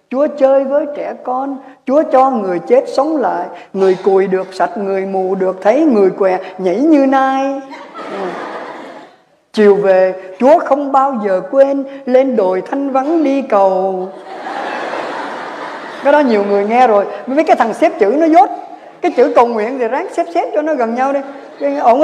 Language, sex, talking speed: Vietnamese, female, 175 wpm